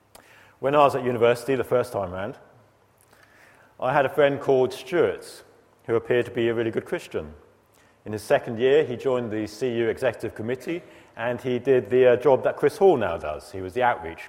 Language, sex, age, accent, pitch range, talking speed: English, male, 40-59, British, 115-140 Hz, 200 wpm